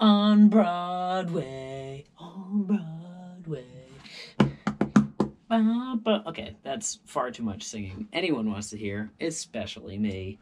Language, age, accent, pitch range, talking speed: English, 30-49, American, 120-200 Hz, 105 wpm